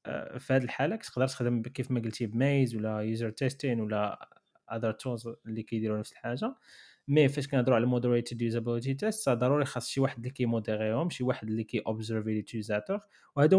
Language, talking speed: Arabic, 170 wpm